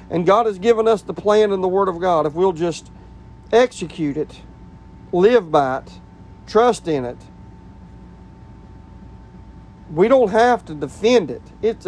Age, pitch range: 40-59, 155-200 Hz